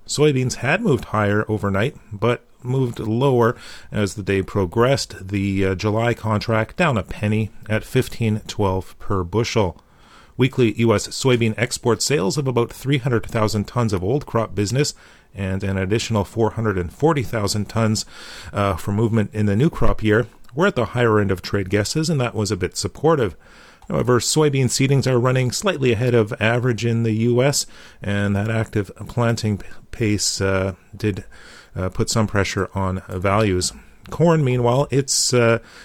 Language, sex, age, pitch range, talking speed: English, male, 40-59, 105-125 Hz, 155 wpm